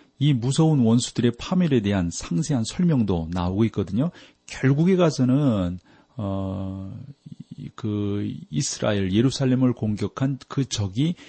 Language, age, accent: Korean, 40-59, native